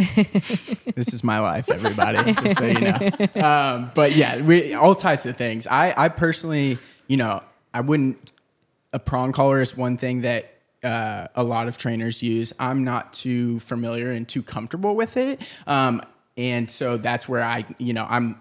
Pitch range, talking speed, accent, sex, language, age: 115-140 Hz, 180 wpm, American, male, English, 20-39